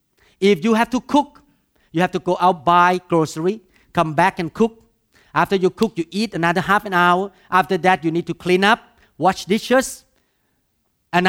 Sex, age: male, 50-69